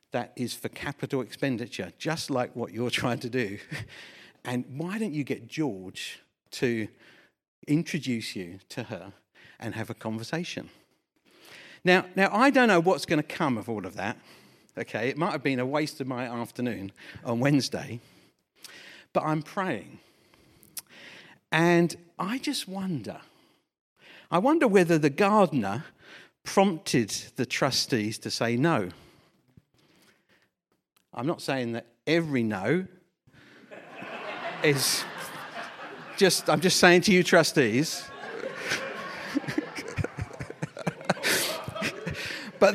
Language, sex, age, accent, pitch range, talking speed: English, male, 50-69, British, 120-185 Hz, 120 wpm